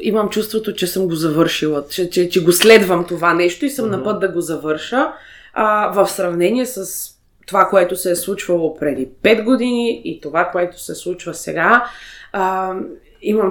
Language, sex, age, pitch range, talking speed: Bulgarian, female, 20-39, 195-255 Hz, 180 wpm